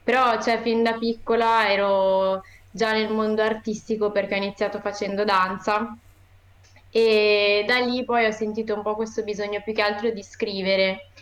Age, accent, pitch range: 20-39, native, 195-220 Hz